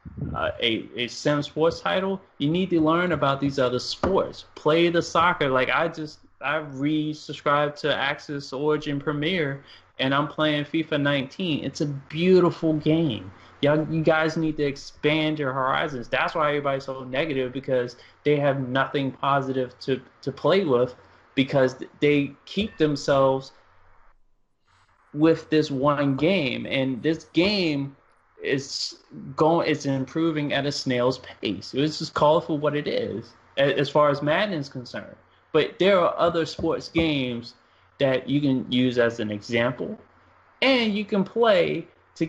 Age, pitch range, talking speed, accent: 20-39, 130-160 Hz, 150 wpm, American